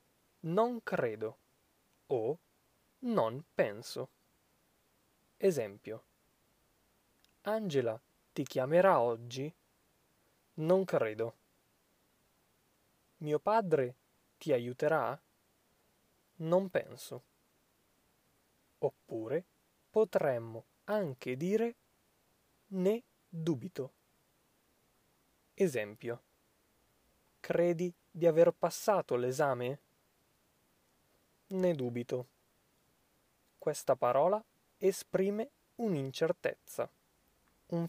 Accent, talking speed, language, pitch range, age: native, 60 wpm, Italian, 125-190 Hz, 20-39